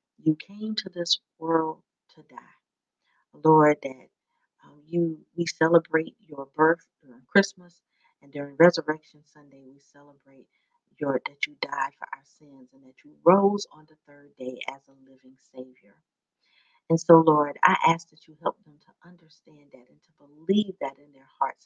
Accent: American